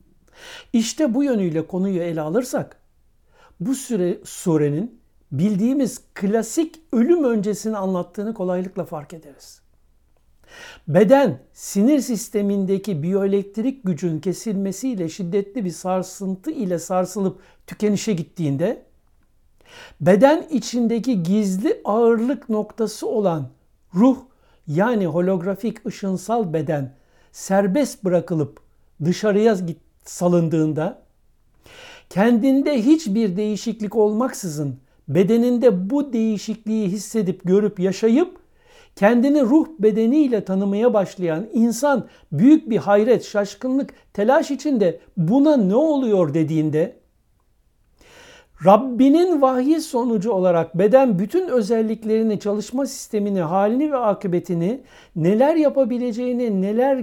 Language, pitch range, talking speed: Turkish, 185-250 Hz, 95 wpm